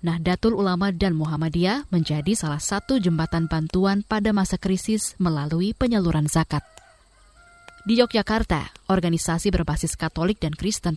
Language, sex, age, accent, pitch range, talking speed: Indonesian, female, 20-39, native, 165-205 Hz, 120 wpm